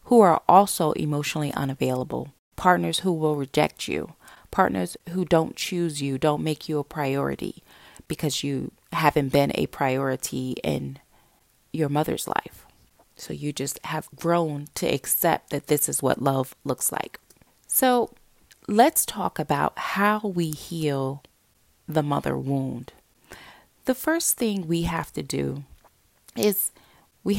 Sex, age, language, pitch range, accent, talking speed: female, 30-49, English, 145-195 Hz, American, 140 wpm